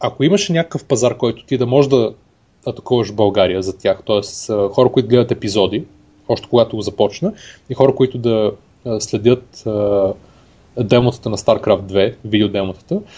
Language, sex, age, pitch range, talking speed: Bulgarian, male, 30-49, 110-140 Hz, 145 wpm